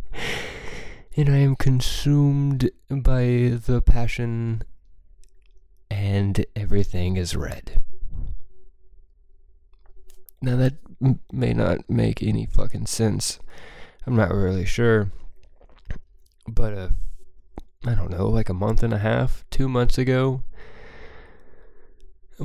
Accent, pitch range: American, 75-115 Hz